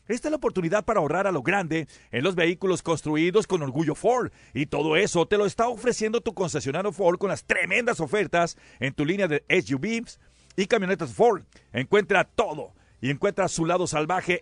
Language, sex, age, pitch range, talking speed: Spanish, male, 50-69, 155-210 Hz, 185 wpm